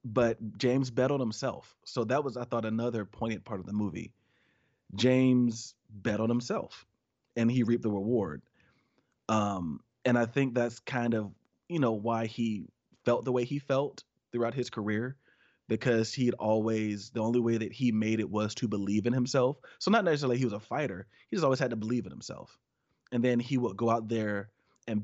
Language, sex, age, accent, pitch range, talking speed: English, male, 30-49, American, 110-125 Hz, 195 wpm